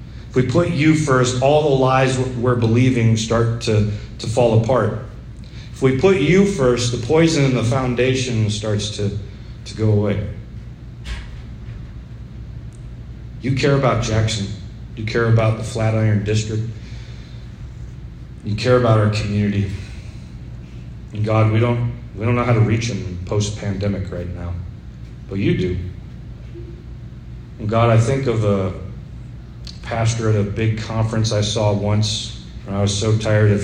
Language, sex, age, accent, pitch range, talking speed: English, male, 40-59, American, 105-120 Hz, 145 wpm